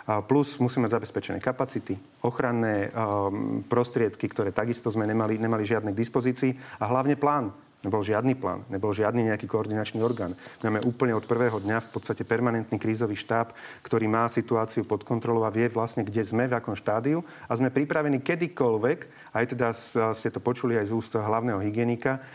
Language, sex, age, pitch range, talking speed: Slovak, male, 40-59, 110-125 Hz, 170 wpm